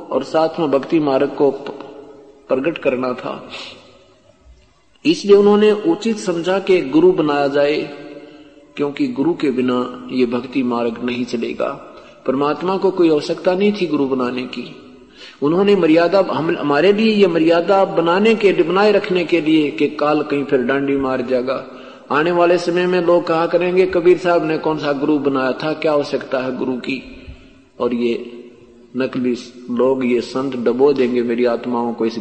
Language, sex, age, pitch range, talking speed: Hindi, male, 50-69, 135-185 Hz, 155 wpm